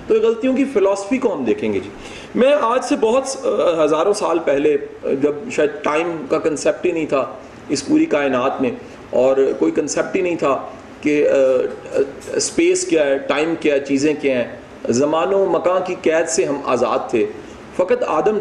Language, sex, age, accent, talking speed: English, male, 40-59, Indian, 170 wpm